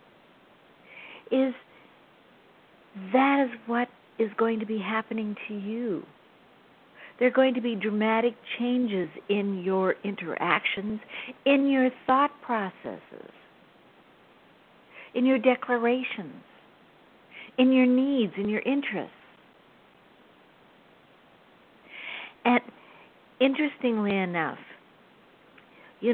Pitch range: 195-250 Hz